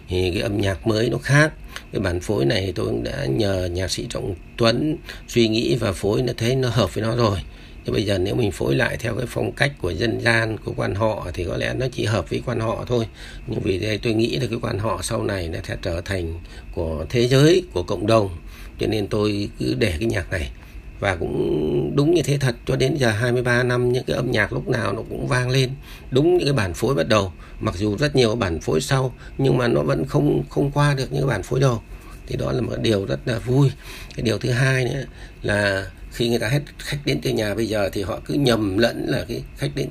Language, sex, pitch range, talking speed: Vietnamese, male, 95-125 Hz, 250 wpm